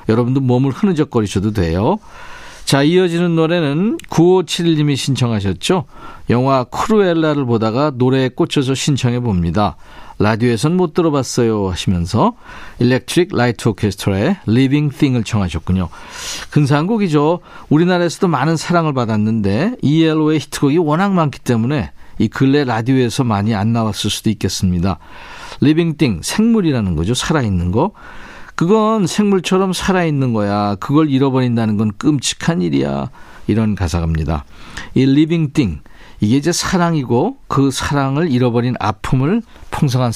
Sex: male